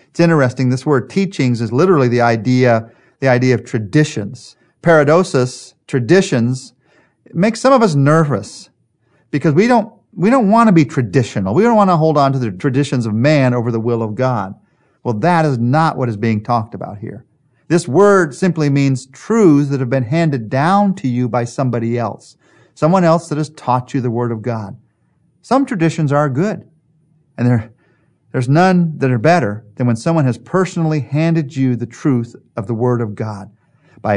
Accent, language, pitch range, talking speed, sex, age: American, English, 120-155 Hz, 185 wpm, male, 40-59